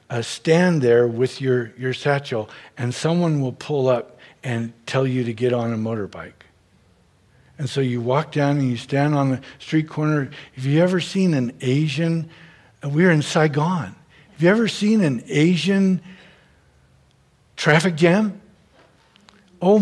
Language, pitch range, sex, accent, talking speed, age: English, 140-180 Hz, male, American, 150 wpm, 60-79